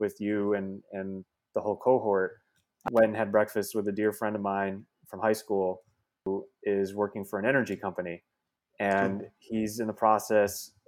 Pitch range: 100-115 Hz